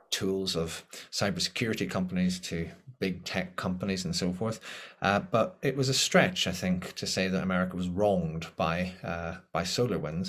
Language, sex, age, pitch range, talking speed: English, male, 30-49, 90-105 Hz, 175 wpm